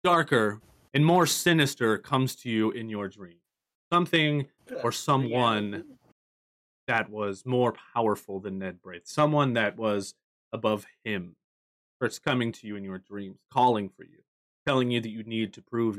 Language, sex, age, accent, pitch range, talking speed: English, male, 30-49, American, 100-135 Hz, 160 wpm